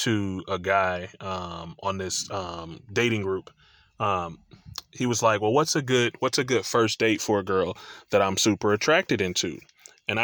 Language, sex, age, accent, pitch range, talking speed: English, male, 20-39, American, 110-165 Hz, 180 wpm